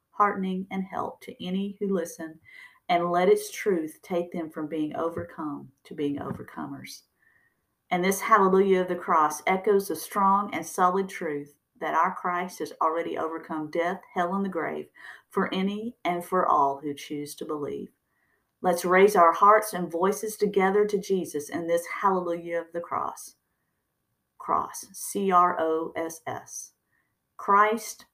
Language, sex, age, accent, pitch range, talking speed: English, female, 50-69, American, 150-190 Hz, 145 wpm